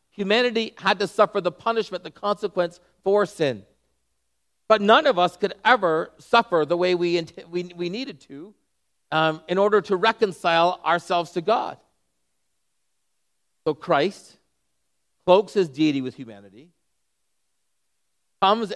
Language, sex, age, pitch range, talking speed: English, male, 40-59, 140-195 Hz, 130 wpm